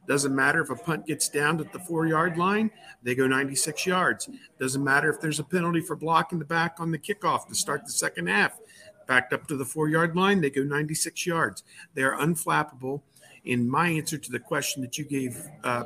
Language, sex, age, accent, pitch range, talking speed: English, male, 50-69, American, 140-175 Hz, 210 wpm